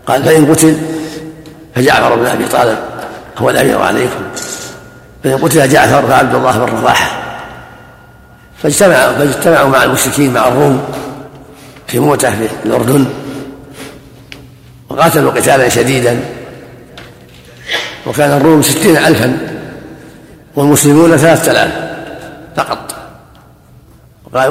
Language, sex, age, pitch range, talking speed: Arabic, male, 60-79, 130-150 Hz, 95 wpm